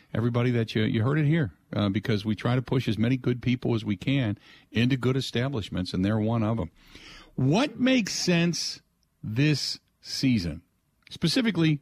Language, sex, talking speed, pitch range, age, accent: English, male, 175 wpm, 105-140 Hz, 50-69, American